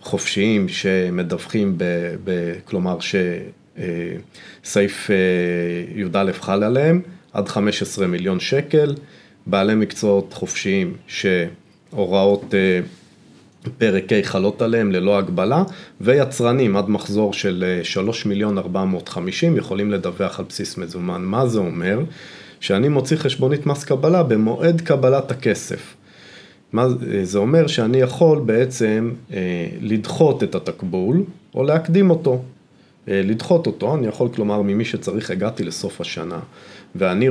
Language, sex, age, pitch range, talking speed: Hebrew, male, 40-59, 95-130 Hz, 115 wpm